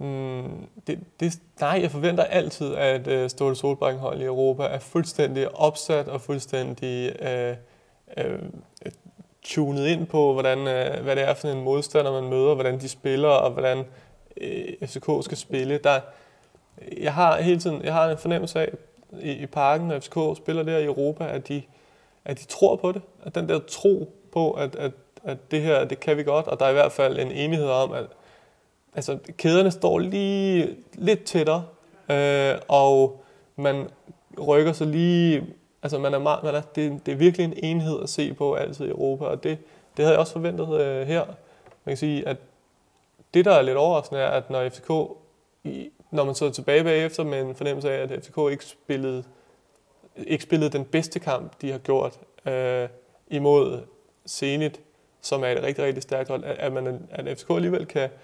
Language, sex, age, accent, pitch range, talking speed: Danish, male, 30-49, native, 135-160 Hz, 185 wpm